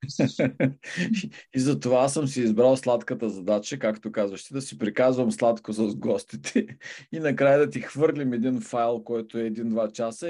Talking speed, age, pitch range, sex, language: 150 wpm, 40-59, 110-145 Hz, male, Bulgarian